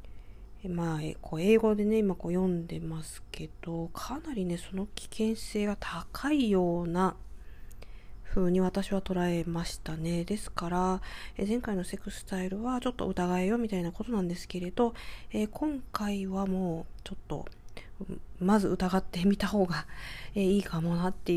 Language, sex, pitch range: Japanese, female, 175-225 Hz